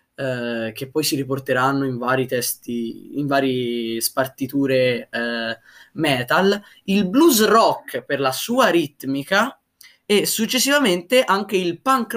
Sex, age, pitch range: male, 20-39, 125-175 Hz